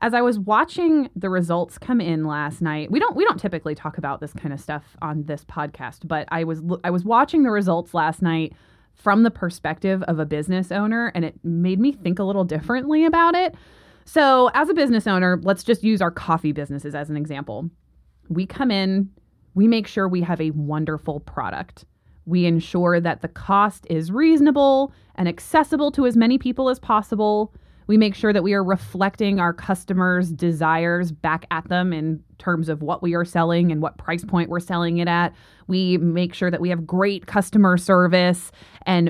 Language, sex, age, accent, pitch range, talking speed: English, female, 20-39, American, 170-215 Hz, 200 wpm